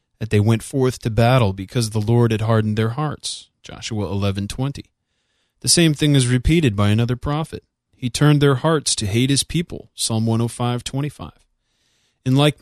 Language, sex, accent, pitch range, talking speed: English, male, American, 105-130 Hz, 165 wpm